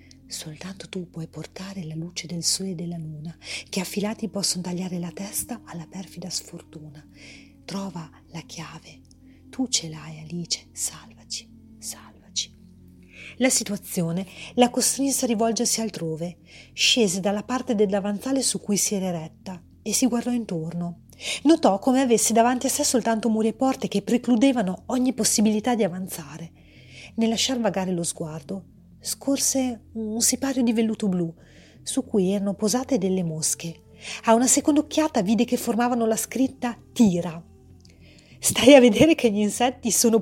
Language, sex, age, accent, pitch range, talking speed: Italian, female, 40-59, native, 170-250 Hz, 150 wpm